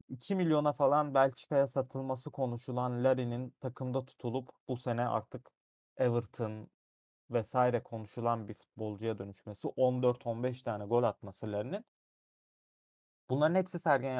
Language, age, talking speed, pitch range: Turkish, 30-49, 110 wpm, 105-130 Hz